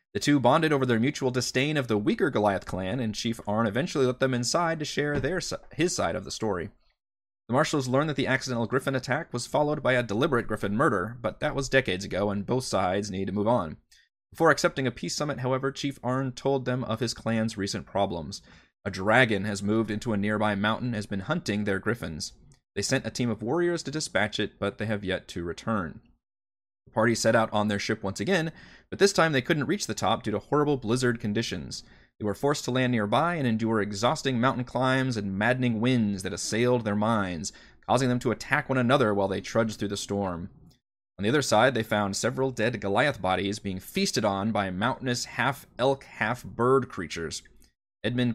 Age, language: 30-49, English